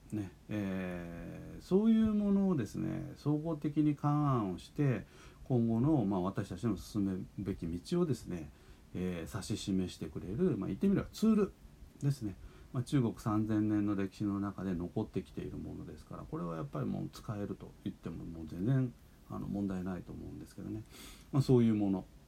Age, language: 40-59, Japanese